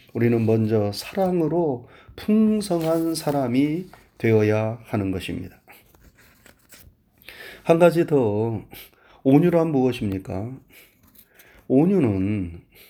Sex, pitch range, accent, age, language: male, 115-170 Hz, native, 30-49, Korean